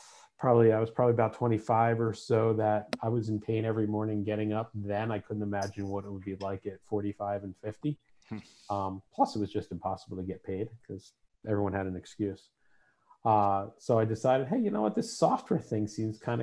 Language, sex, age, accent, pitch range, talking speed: English, male, 40-59, American, 105-120 Hz, 210 wpm